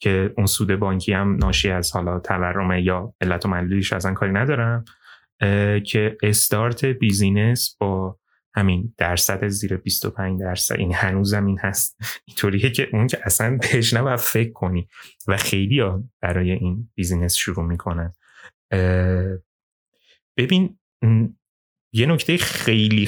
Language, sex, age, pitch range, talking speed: Persian, male, 30-49, 95-125 Hz, 125 wpm